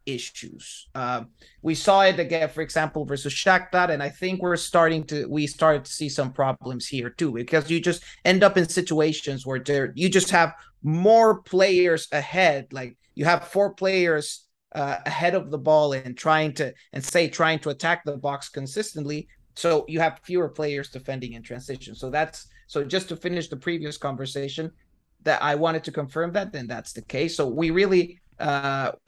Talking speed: 185 wpm